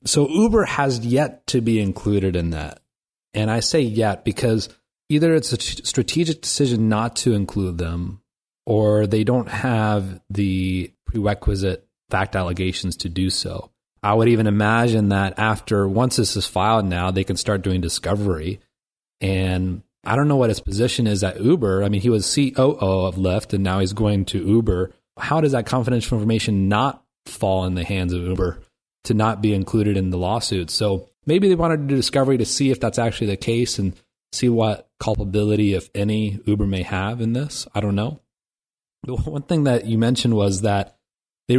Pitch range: 95-125 Hz